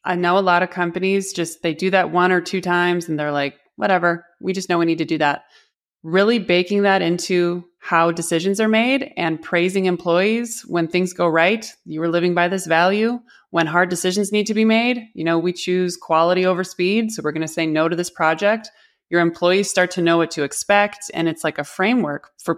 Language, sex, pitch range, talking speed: English, male, 155-190 Hz, 225 wpm